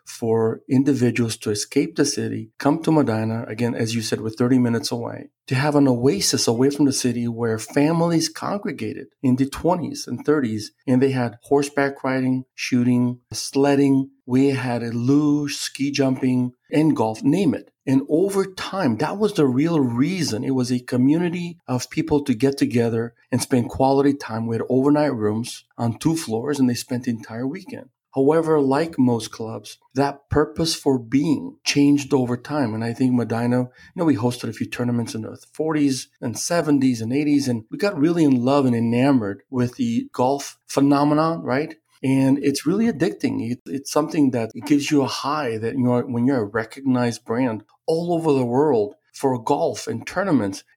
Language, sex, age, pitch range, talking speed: English, male, 40-59, 120-150 Hz, 185 wpm